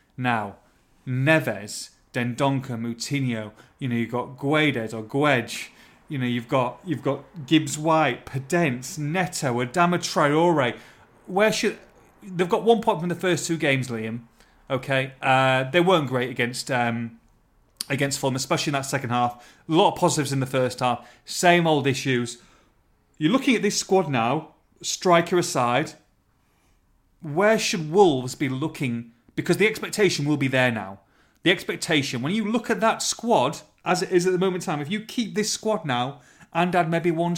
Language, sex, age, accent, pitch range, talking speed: English, male, 30-49, British, 125-175 Hz, 170 wpm